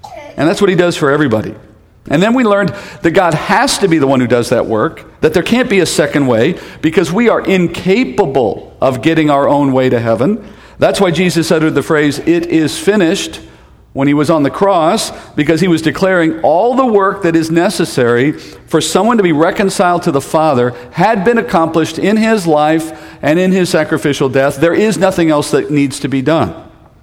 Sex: male